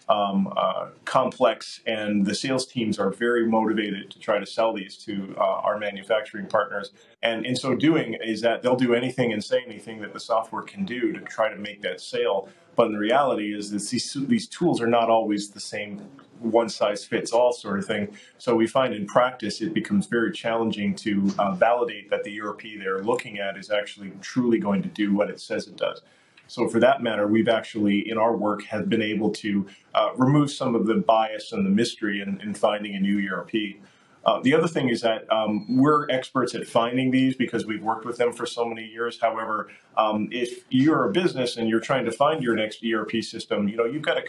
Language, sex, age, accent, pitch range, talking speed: English, male, 40-59, American, 105-125 Hz, 220 wpm